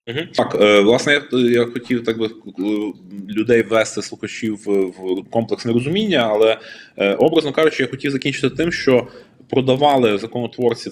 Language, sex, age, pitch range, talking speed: Ukrainian, male, 20-39, 110-145 Hz, 145 wpm